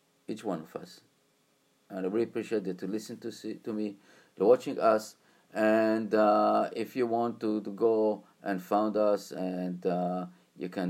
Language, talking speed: English, 180 wpm